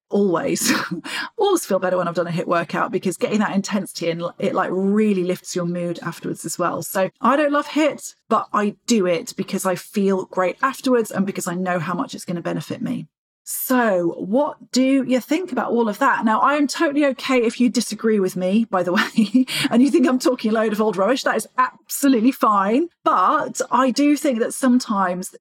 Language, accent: English, British